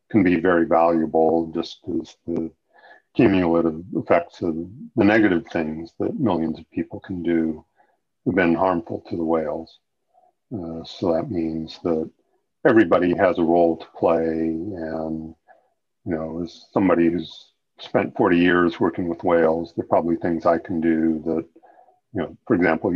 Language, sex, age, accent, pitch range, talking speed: English, male, 50-69, American, 80-85 Hz, 155 wpm